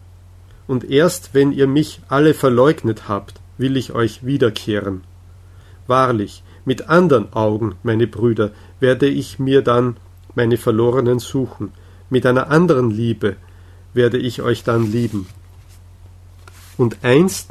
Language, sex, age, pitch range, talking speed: German, male, 50-69, 95-140 Hz, 125 wpm